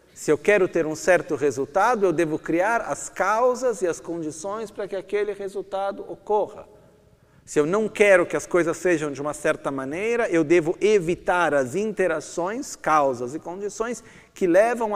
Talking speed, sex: 170 wpm, male